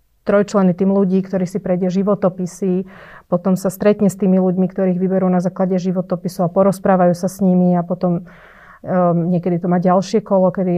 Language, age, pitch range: Slovak, 30-49, 180-195 Hz